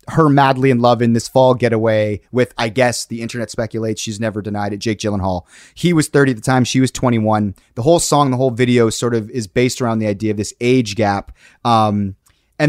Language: English